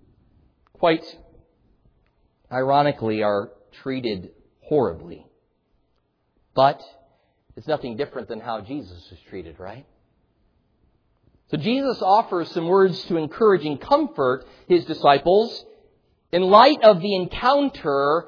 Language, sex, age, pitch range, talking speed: English, male, 40-59, 130-205 Hz, 100 wpm